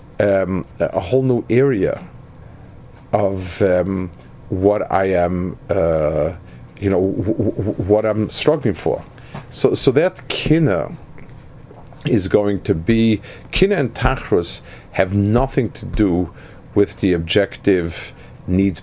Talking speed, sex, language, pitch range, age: 120 wpm, male, English, 95-125 Hz, 50-69